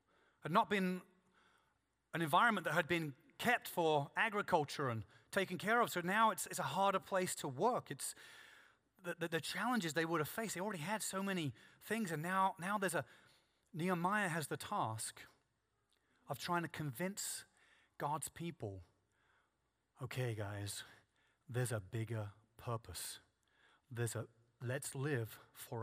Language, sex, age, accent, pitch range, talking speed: English, male, 30-49, British, 115-170 Hz, 150 wpm